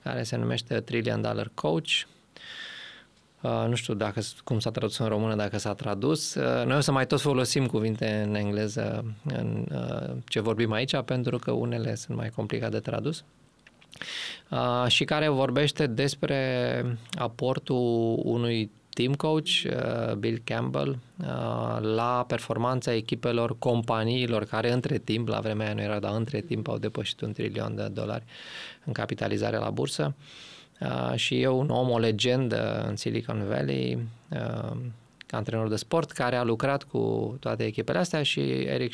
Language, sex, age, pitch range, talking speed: Romanian, male, 20-39, 110-125 Hz, 150 wpm